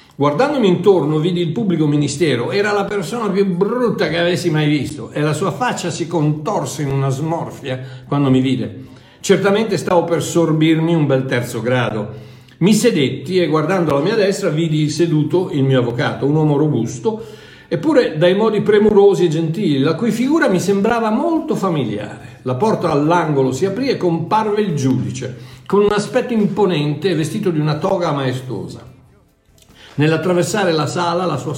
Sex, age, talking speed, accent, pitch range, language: male, 60-79, 165 wpm, native, 145-205 Hz, Italian